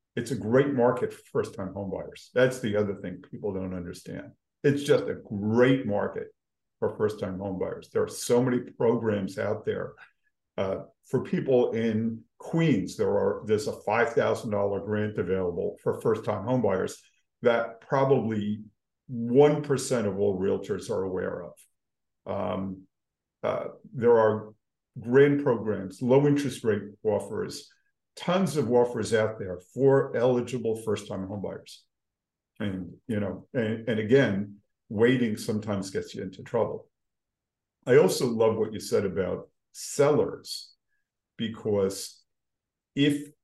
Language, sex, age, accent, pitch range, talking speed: English, male, 50-69, American, 105-135 Hz, 130 wpm